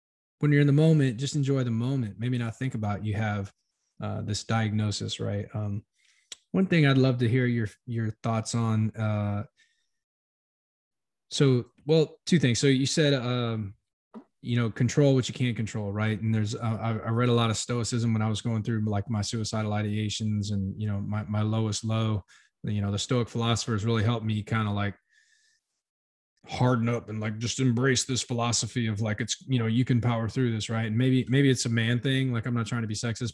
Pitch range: 105-125 Hz